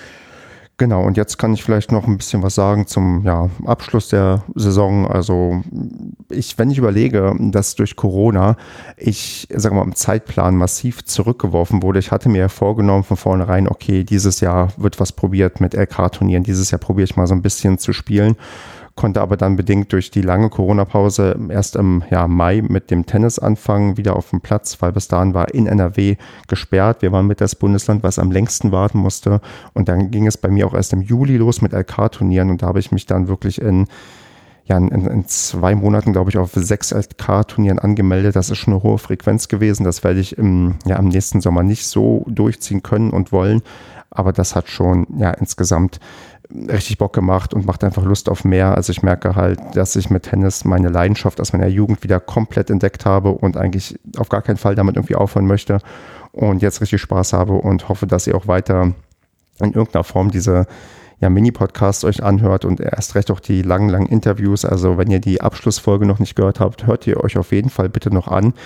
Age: 40-59